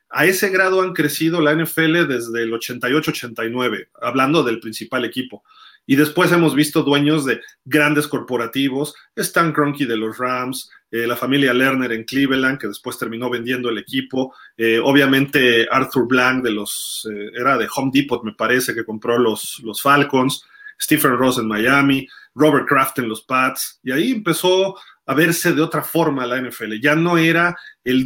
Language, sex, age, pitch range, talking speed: Spanish, male, 40-59, 125-155 Hz, 165 wpm